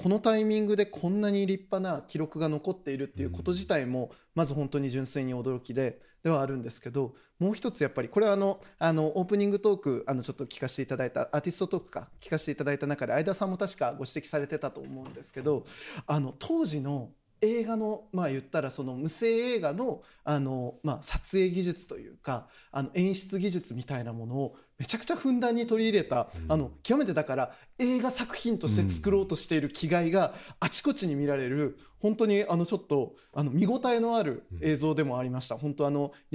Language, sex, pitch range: Japanese, male, 140-190 Hz